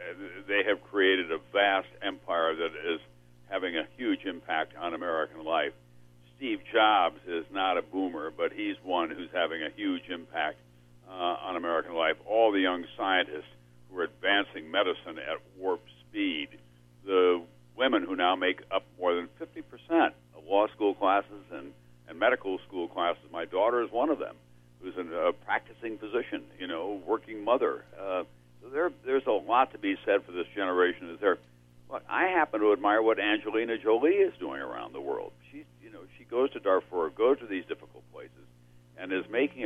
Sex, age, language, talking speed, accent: male, 60-79, English, 180 wpm, American